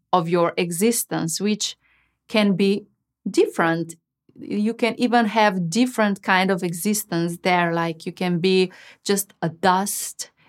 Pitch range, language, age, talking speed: 175-220 Hz, English, 30-49, 130 wpm